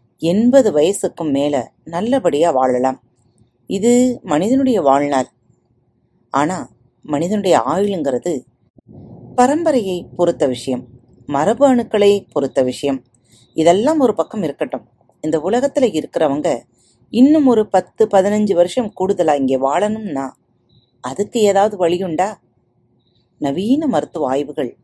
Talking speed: 95 wpm